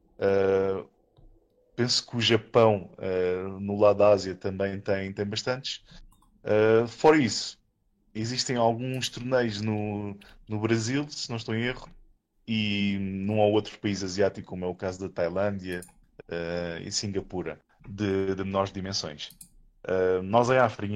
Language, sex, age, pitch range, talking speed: Portuguese, male, 20-39, 95-110 Hz, 130 wpm